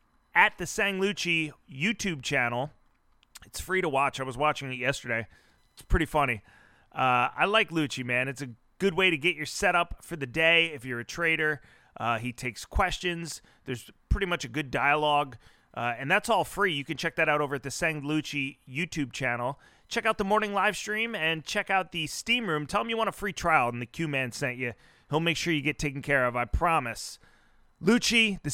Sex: male